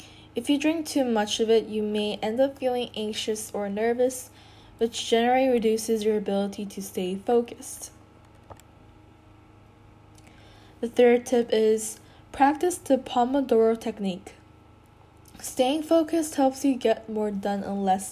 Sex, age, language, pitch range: female, 10-29, Korean, 195-240 Hz